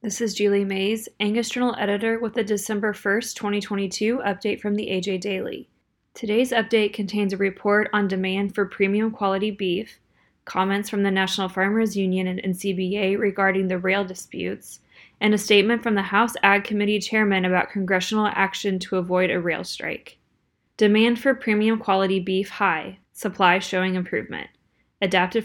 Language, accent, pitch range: English, American, 195-220 Hz